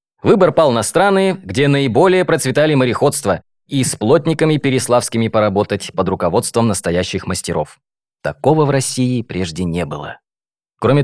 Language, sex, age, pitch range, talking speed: Russian, male, 20-39, 105-165 Hz, 130 wpm